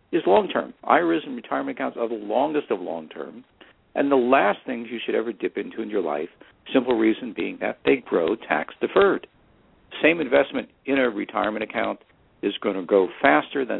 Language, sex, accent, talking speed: English, male, American, 185 wpm